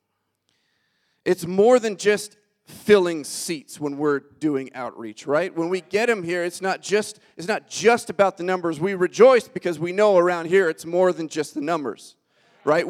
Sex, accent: male, American